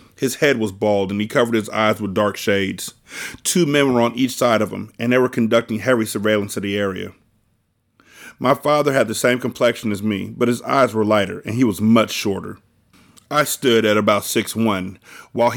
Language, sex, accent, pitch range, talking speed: English, male, American, 105-125 Hz, 205 wpm